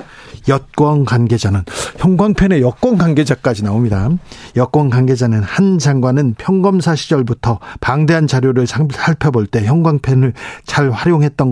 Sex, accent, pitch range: male, native, 130-180 Hz